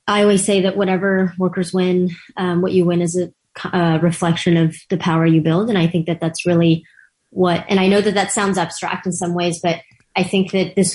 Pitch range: 165-195 Hz